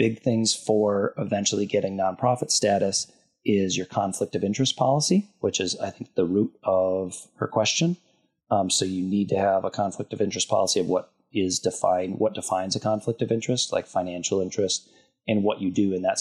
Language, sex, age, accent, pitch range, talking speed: English, male, 30-49, American, 95-110 Hz, 195 wpm